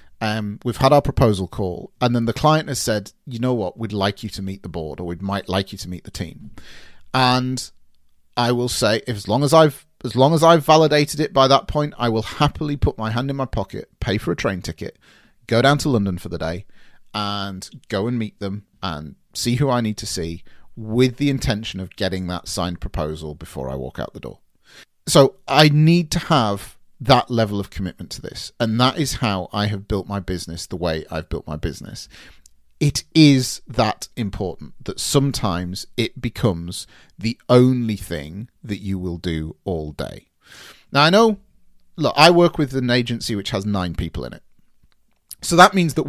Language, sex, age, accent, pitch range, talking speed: English, male, 30-49, British, 95-135 Hz, 205 wpm